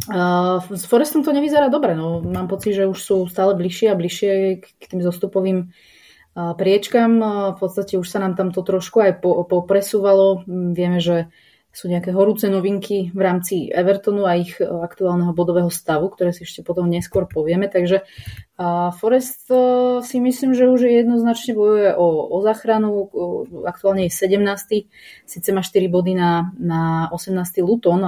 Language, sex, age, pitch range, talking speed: Slovak, female, 20-39, 170-200 Hz, 155 wpm